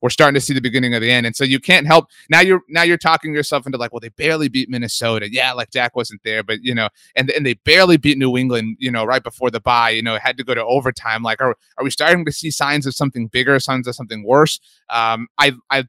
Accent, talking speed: American, 270 wpm